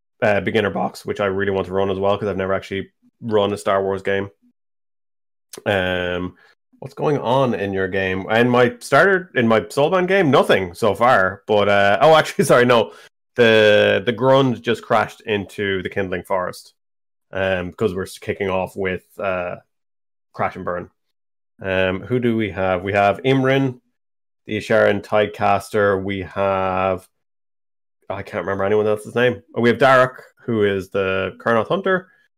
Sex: male